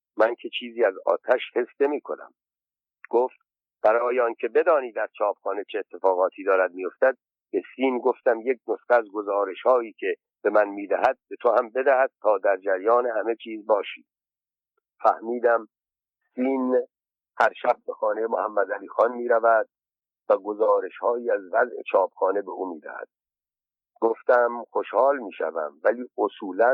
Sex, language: male, Persian